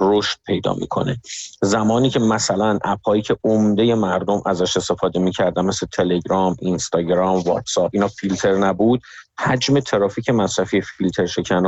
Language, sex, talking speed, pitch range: Persian, male, 125 wpm, 100-130 Hz